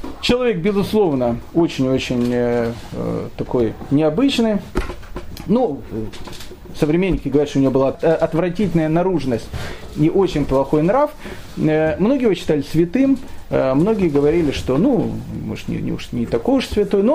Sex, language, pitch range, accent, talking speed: male, Russian, 140-190 Hz, native, 115 wpm